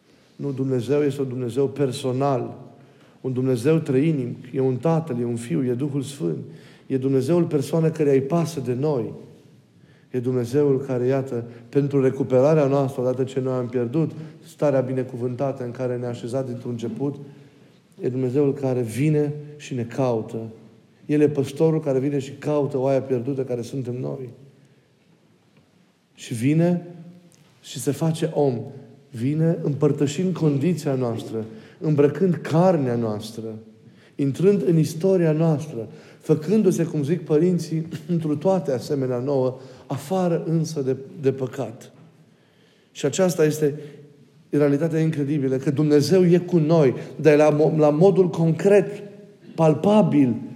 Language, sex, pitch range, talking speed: Romanian, male, 130-160 Hz, 135 wpm